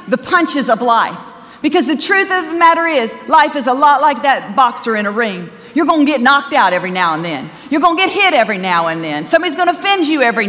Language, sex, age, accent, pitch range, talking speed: English, female, 40-59, American, 220-310 Hz, 245 wpm